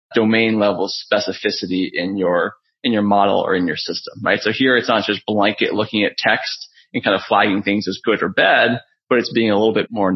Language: English